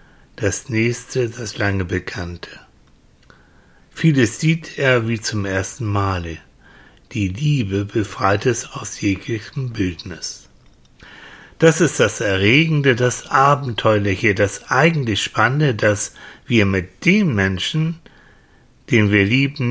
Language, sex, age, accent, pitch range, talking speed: German, male, 60-79, German, 100-125 Hz, 110 wpm